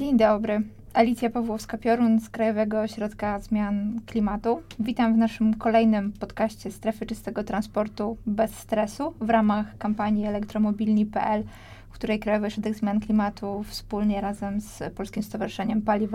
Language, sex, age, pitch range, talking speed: Polish, female, 20-39, 205-230 Hz, 130 wpm